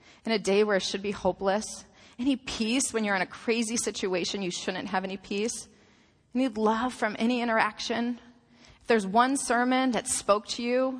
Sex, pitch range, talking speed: female, 185-235 Hz, 185 wpm